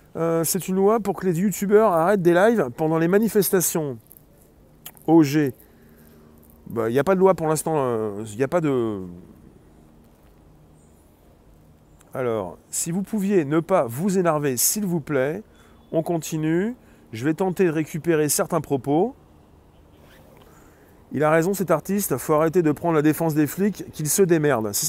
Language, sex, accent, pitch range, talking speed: French, male, French, 120-185 Hz, 165 wpm